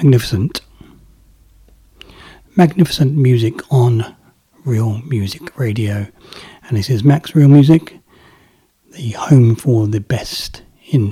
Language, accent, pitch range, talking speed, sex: English, British, 115-150 Hz, 105 wpm, male